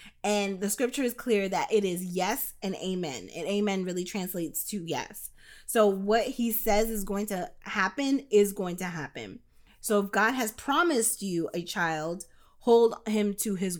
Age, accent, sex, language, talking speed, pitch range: 20-39, American, female, English, 180 wpm, 175-215 Hz